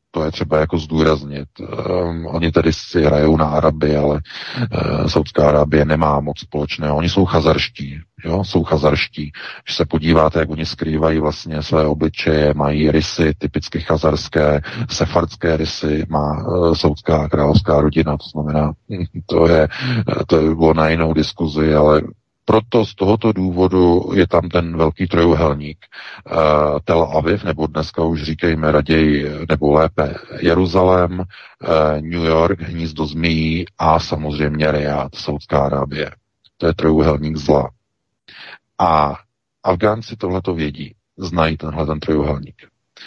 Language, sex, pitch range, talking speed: Czech, male, 75-85 Hz, 130 wpm